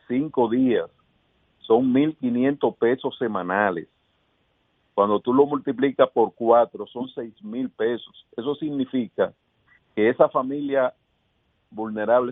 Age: 50-69